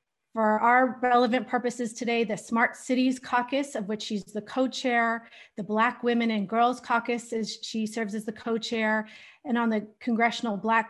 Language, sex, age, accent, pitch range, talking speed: English, female, 30-49, American, 220-245 Hz, 170 wpm